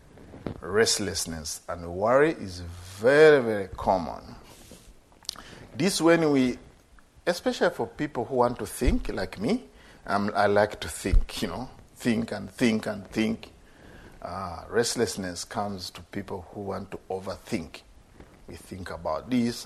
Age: 50-69